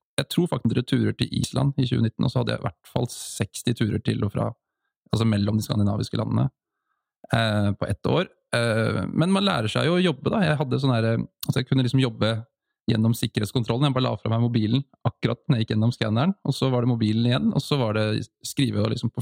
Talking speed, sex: 210 wpm, male